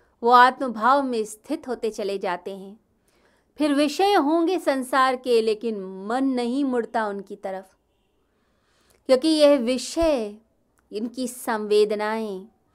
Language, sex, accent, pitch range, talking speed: Hindi, female, native, 210-270 Hz, 115 wpm